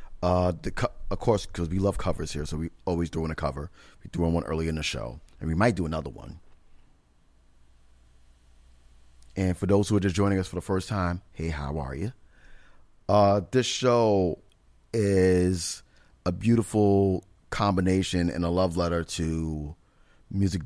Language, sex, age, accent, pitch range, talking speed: English, male, 30-49, American, 70-90 Hz, 175 wpm